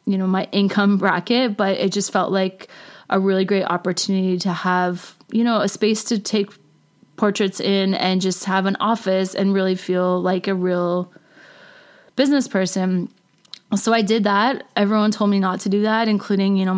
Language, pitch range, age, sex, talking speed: English, 185-205 Hz, 20-39, female, 180 wpm